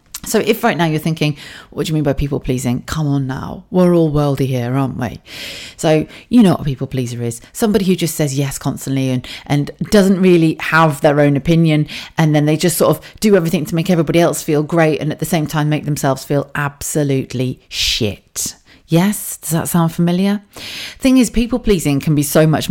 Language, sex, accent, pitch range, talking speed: English, female, British, 140-180 Hz, 215 wpm